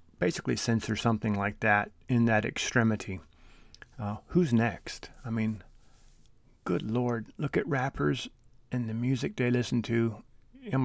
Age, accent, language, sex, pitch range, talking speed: 30-49, American, English, male, 100-120 Hz, 140 wpm